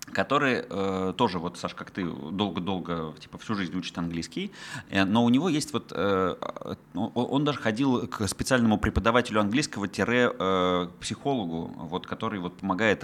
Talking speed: 160 wpm